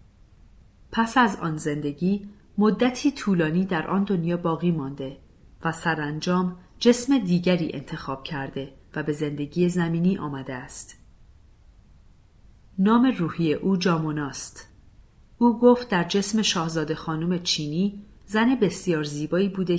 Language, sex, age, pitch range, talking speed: Persian, female, 40-59, 145-195 Hz, 120 wpm